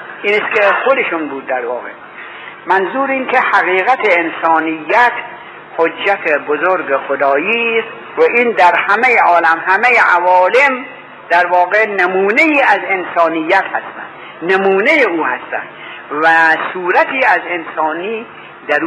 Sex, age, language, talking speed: male, 60-79, Persian, 115 wpm